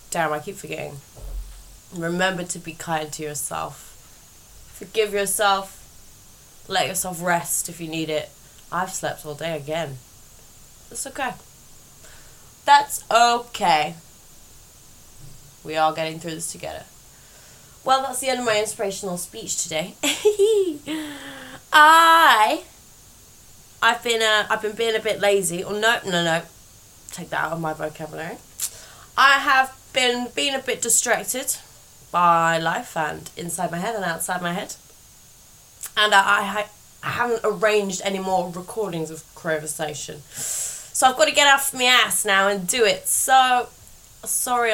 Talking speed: 140 wpm